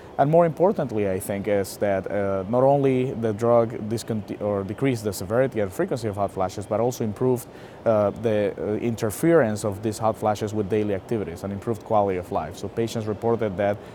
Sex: male